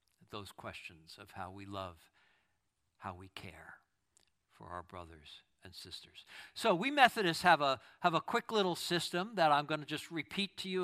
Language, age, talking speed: English, 60-79, 175 wpm